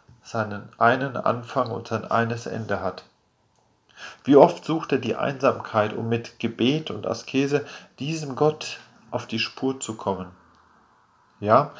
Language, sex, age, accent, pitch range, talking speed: German, male, 40-59, German, 110-140 Hz, 135 wpm